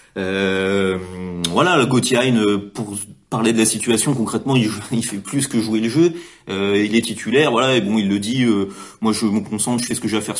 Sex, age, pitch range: male, 30-49, 105-125 Hz